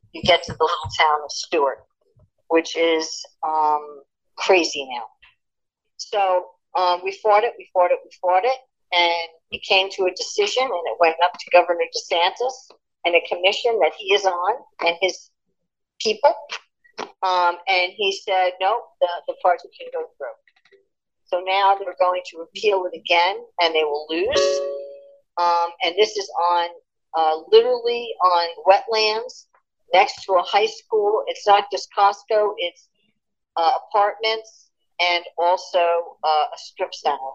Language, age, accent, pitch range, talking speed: English, 50-69, American, 165-220 Hz, 155 wpm